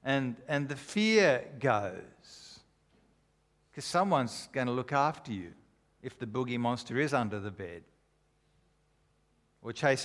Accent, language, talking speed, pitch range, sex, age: Australian, English, 130 wpm, 120-165 Hz, male, 50-69